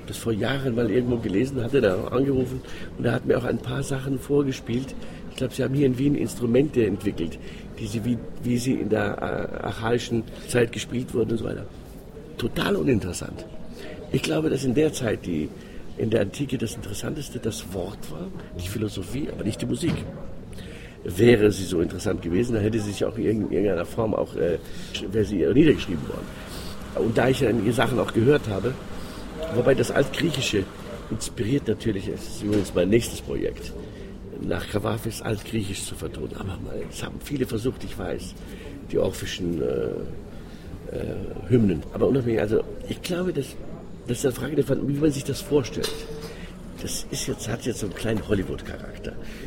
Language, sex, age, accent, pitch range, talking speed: German, male, 50-69, German, 95-125 Hz, 175 wpm